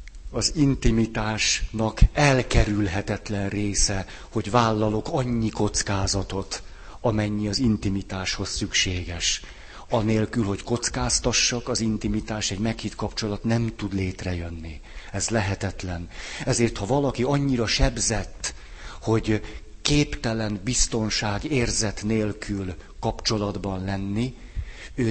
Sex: male